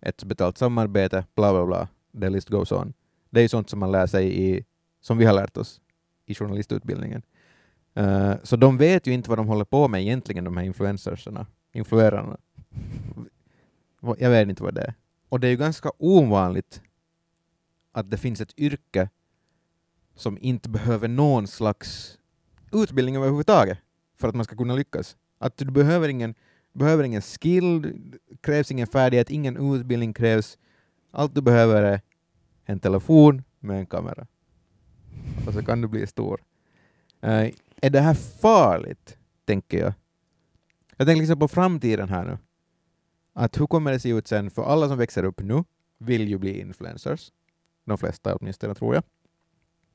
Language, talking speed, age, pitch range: Finnish, 160 wpm, 30-49, 100-135 Hz